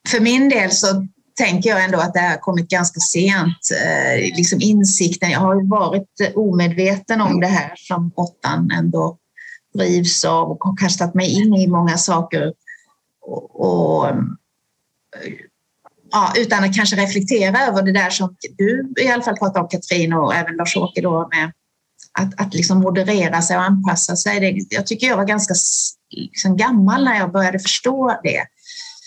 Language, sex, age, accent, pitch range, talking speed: Swedish, female, 30-49, native, 175-210 Hz, 165 wpm